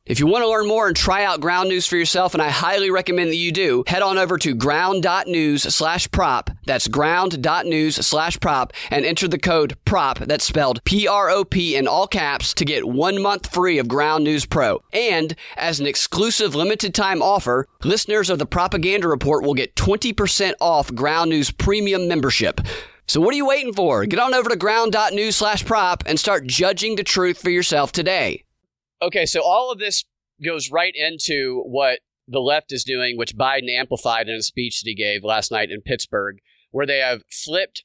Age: 30-49